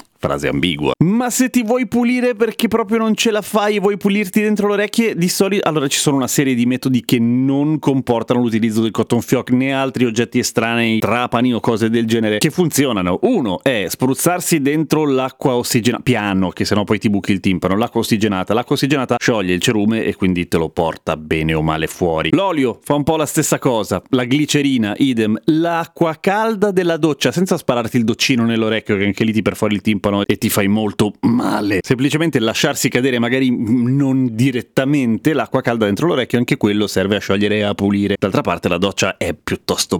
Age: 30-49